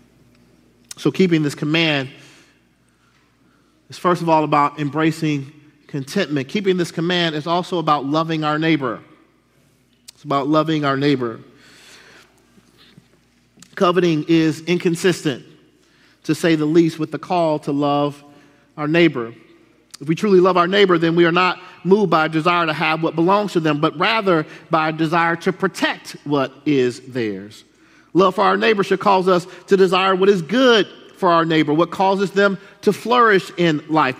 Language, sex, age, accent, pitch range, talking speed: English, male, 40-59, American, 155-195 Hz, 160 wpm